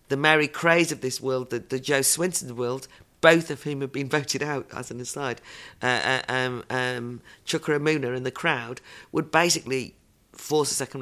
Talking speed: 185 wpm